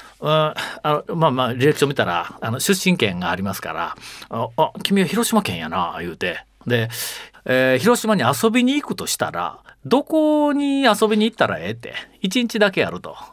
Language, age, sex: Japanese, 40-59, male